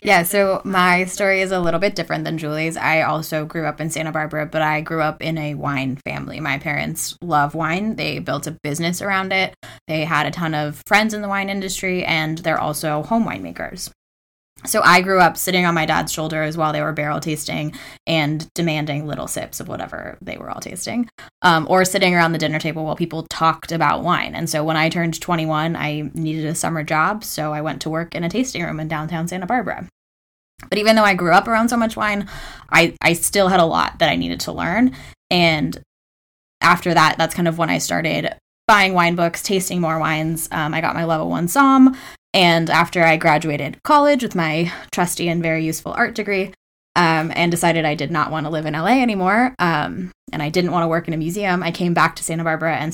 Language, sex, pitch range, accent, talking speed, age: English, female, 155-180 Hz, American, 220 wpm, 10-29